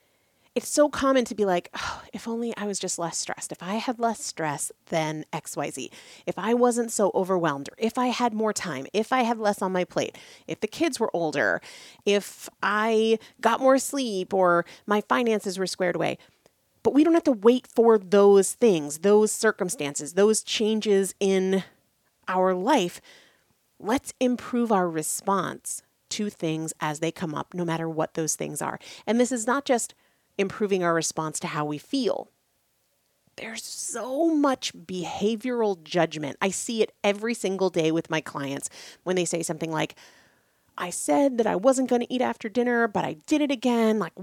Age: 30-49